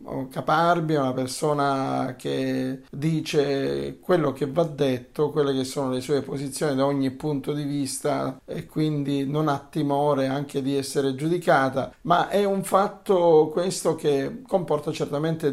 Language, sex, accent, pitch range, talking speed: Italian, male, native, 140-170 Hz, 145 wpm